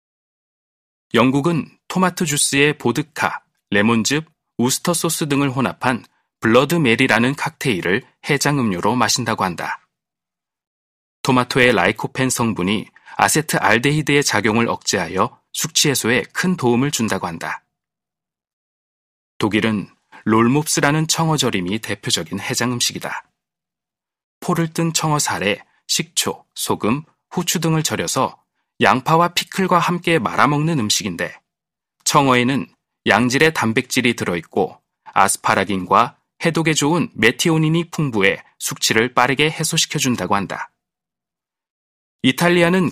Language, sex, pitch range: Korean, male, 115-160 Hz